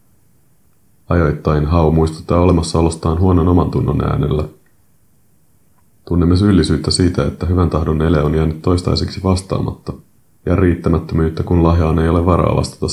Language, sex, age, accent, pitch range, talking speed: Finnish, male, 30-49, native, 75-90 Hz, 125 wpm